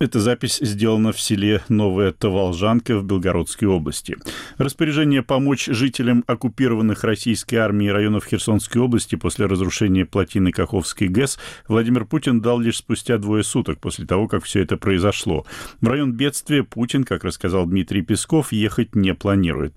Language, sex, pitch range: Russian, male, 95-120 Hz